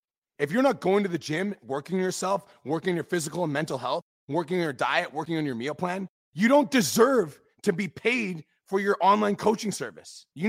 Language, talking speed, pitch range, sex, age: English, 200 wpm, 155-215 Hz, male, 30-49